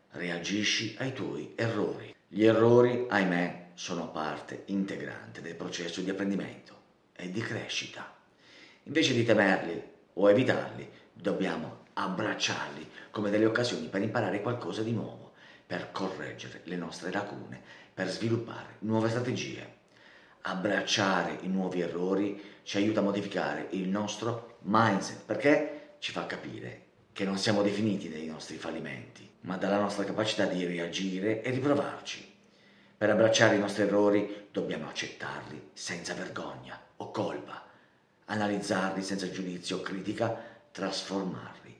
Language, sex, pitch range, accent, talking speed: Italian, male, 90-110 Hz, native, 125 wpm